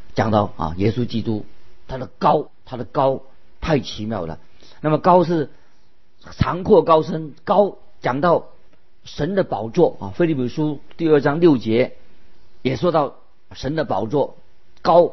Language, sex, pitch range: Chinese, male, 110-155 Hz